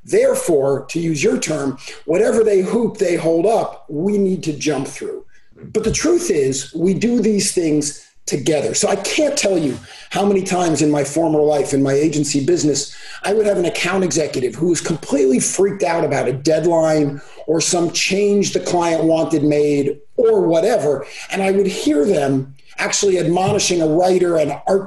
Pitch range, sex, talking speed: 165-225 Hz, male, 180 wpm